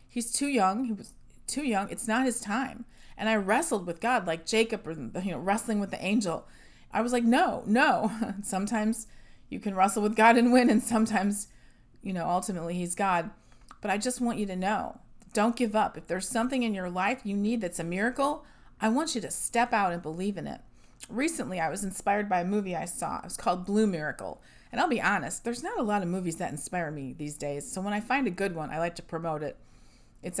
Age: 30-49